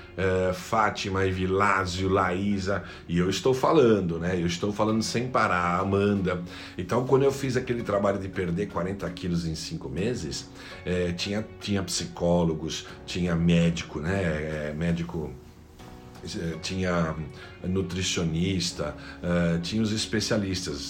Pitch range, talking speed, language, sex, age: 85-105 Hz, 125 wpm, Portuguese, male, 60-79